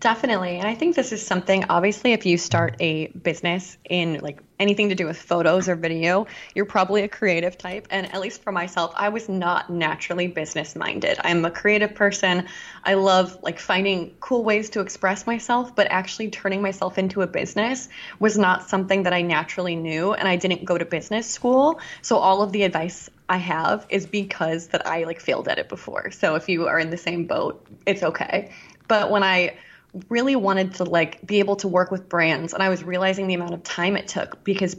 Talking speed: 210 wpm